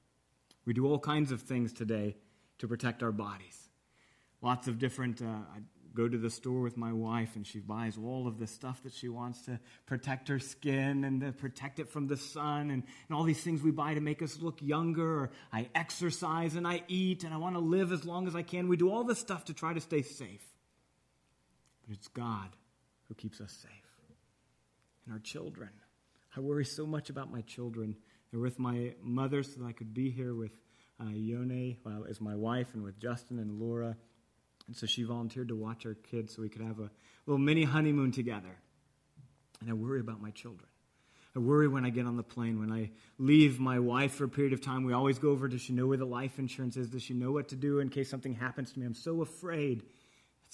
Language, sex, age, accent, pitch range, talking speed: English, male, 30-49, American, 115-145 Hz, 225 wpm